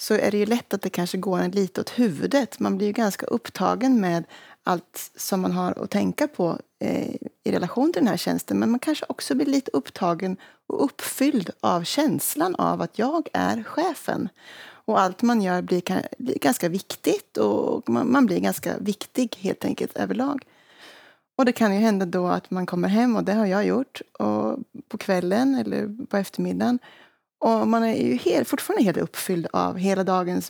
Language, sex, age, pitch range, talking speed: English, female, 30-49, 180-245 Hz, 185 wpm